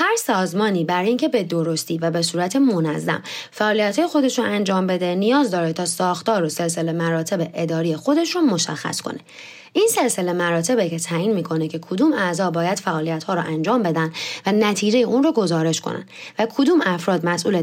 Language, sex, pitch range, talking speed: Persian, female, 165-245 Hz, 170 wpm